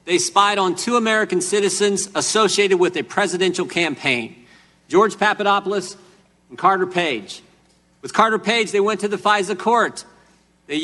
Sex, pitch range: male, 185-215 Hz